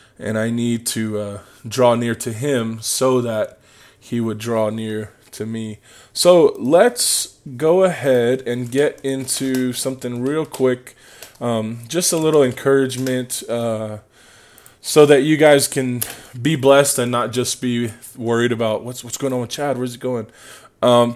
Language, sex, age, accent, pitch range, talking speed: English, male, 20-39, American, 115-135 Hz, 160 wpm